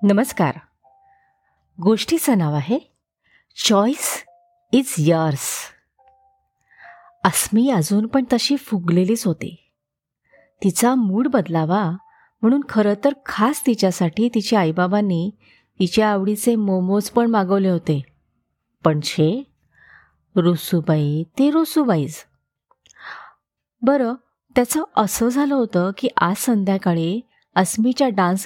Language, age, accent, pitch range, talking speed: Marathi, 30-49, native, 185-275 Hz, 95 wpm